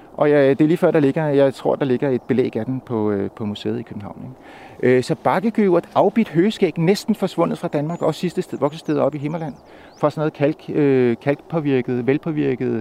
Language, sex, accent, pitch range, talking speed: Danish, male, native, 125-170 Hz, 210 wpm